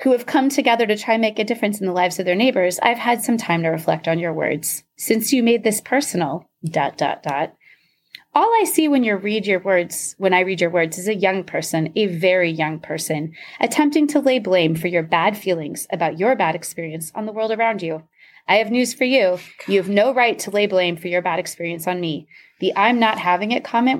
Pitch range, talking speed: 170-240 Hz, 240 wpm